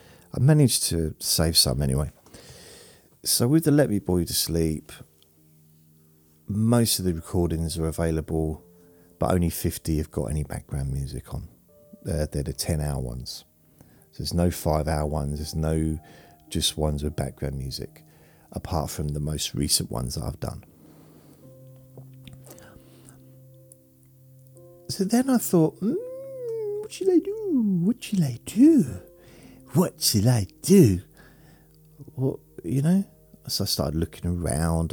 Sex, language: male, English